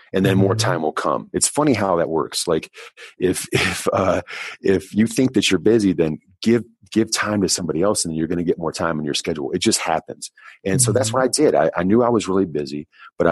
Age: 40-59